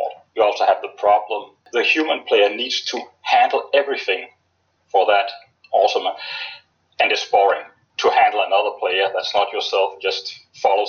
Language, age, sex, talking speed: English, 40-59, male, 125 wpm